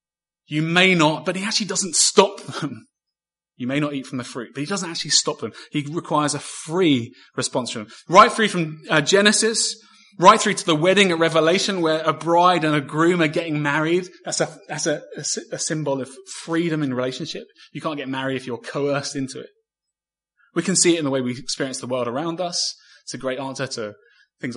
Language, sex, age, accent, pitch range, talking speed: English, male, 20-39, British, 145-195 Hz, 215 wpm